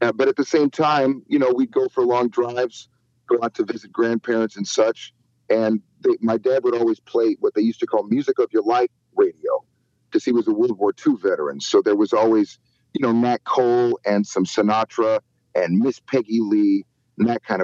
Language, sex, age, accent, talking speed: English, male, 40-59, American, 210 wpm